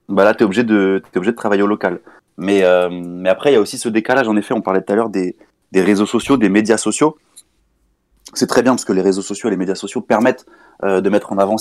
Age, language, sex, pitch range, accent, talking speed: 20-39, French, male, 100-115 Hz, French, 270 wpm